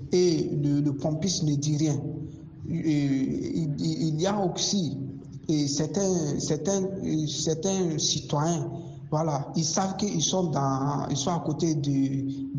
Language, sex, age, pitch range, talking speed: French, male, 50-69, 140-165 Hz, 145 wpm